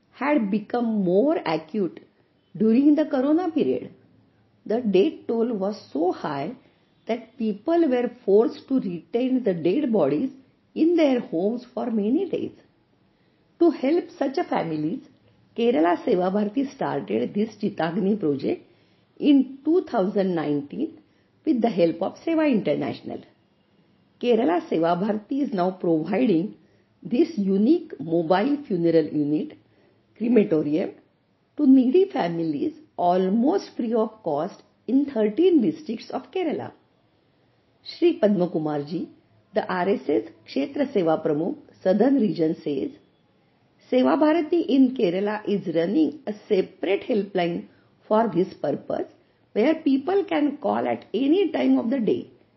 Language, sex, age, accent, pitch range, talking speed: Hindi, female, 50-69, native, 190-305 Hz, 120 wpm